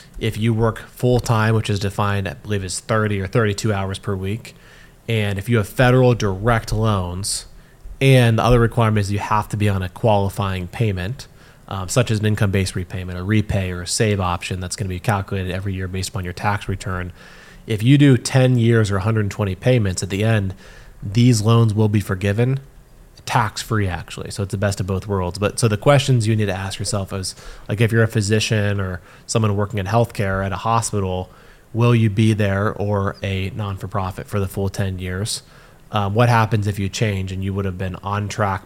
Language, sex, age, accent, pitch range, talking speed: English, male, 20-39, American, 95-115 Hz, 205 wpm